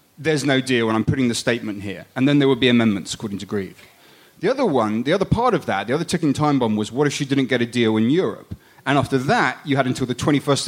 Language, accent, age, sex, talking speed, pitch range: English, British, 30-49, male, 275 wpm, 120-155 Hz